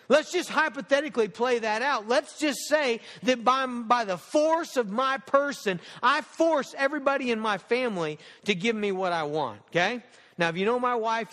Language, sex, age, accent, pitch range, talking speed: English, male, 40-59, American, 205-290 Hz, 190 wpm